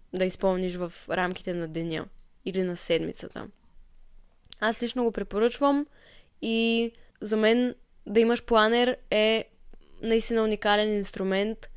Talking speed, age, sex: 115 wpm, 20-39, female